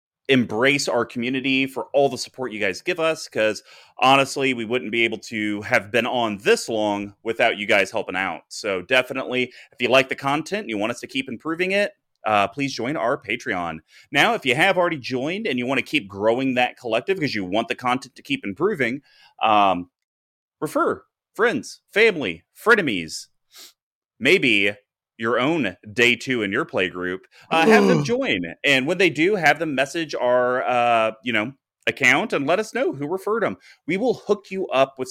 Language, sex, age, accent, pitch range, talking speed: English, male, 30-49, American, 110-140 Hz, 190 wpm